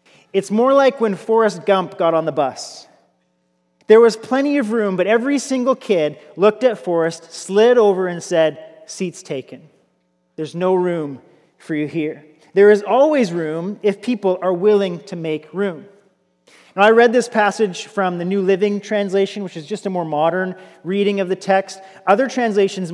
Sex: male